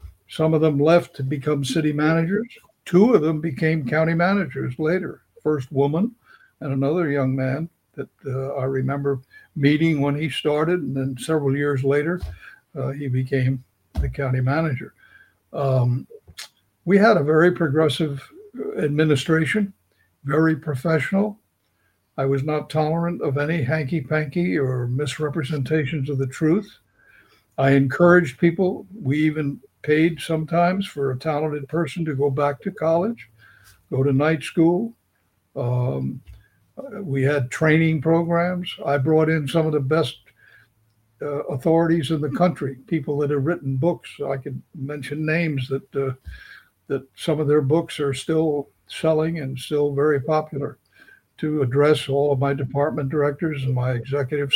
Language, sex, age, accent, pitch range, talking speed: English, male, 60-79, American, 135-160 Hz, 145 wpm